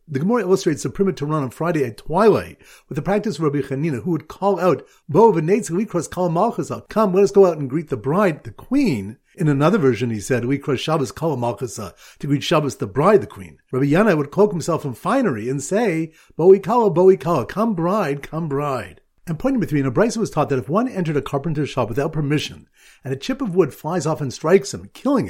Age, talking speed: 50-69, 230 wpm